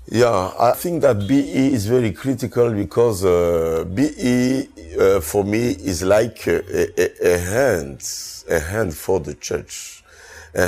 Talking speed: 145 wpm